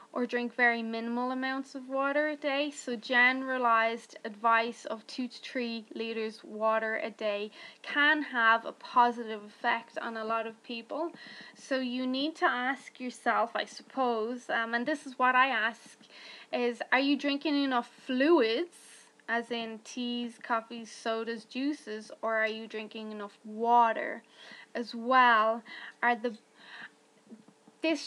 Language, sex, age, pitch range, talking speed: English, female, 10-29, 230-280 Hz, 145 wpm